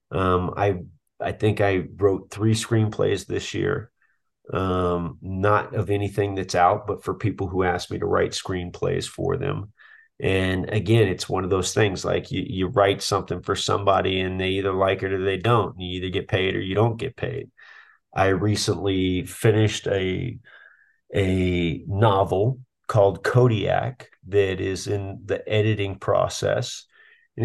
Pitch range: 95-105 Hz